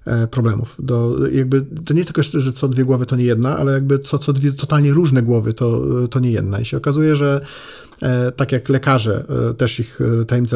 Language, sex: Polish, male